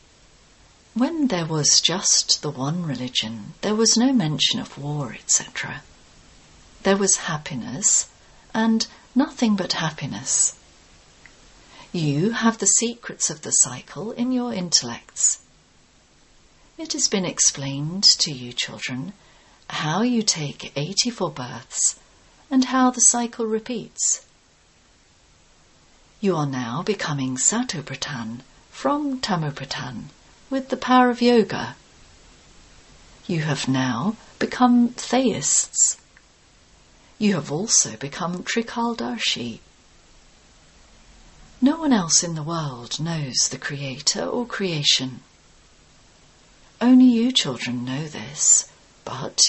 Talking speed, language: 105 wpm, English